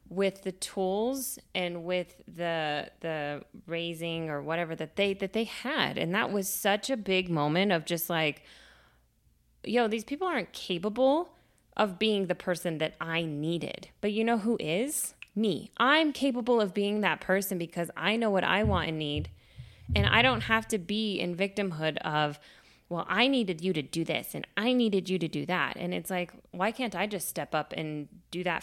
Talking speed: 195 wpm